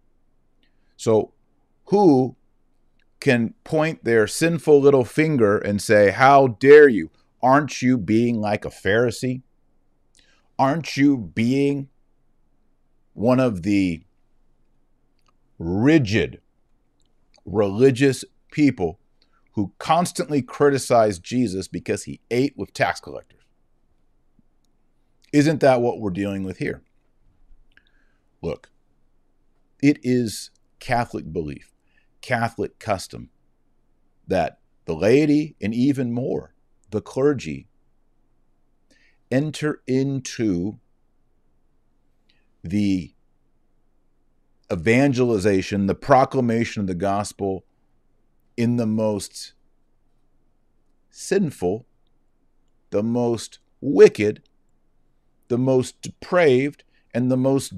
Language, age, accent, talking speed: English, 50-69, American, 85 wpm